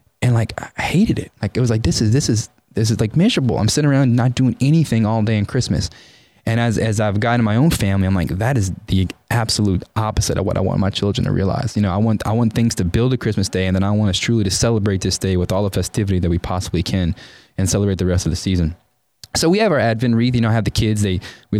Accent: American